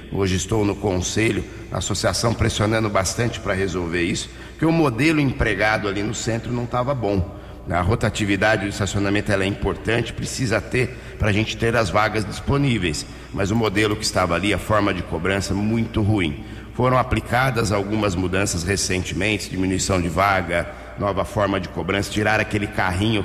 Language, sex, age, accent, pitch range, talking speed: English, male, 60-79, Brazilian, 95-110 Hz, 165 wpm